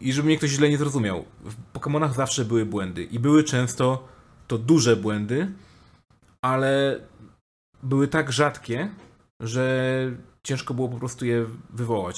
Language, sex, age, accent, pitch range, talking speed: Polish, male, 30-49, native, 105-125 Hz, 145 wpm